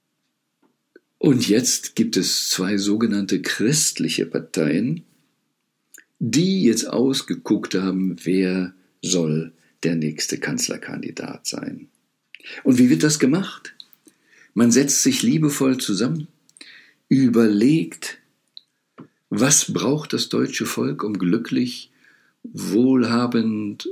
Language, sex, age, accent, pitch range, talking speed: German, male, 50-69, German, 95-140 Hz, 95 wpm